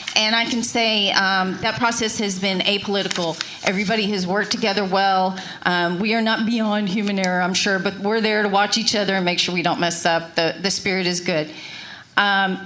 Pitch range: 185-235 Hz